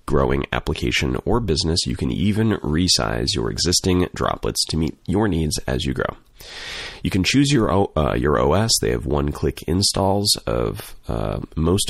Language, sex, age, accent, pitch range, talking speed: English, male, 30-49, American, 70-95 Hz, 160 wpm